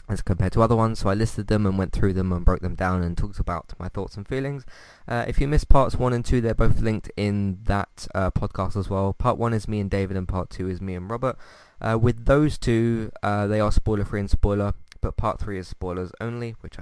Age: 20-39